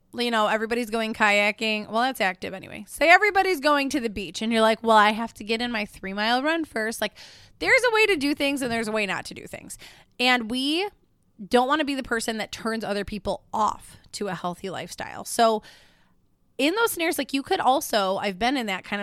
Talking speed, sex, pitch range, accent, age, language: 235 wpm, female, 205-270 Hz, American, 20-39, English